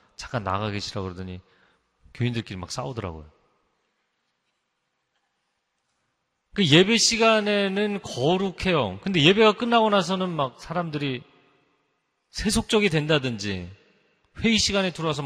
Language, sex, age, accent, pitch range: Korean, male, 40-59, native, 120-190 Hz